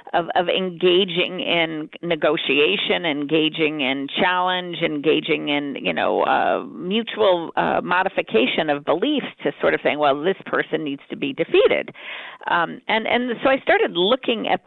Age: 50-69